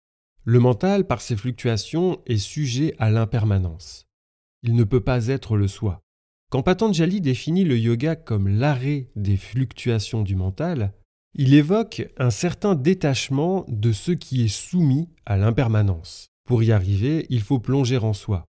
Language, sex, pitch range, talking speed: French, male, 100-145 Hz, 150 wpm